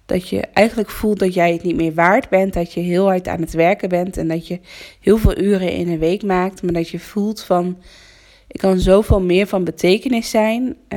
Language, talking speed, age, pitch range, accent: Dutch, 225 wpm, 20-39, 165-195 Hz, Dutch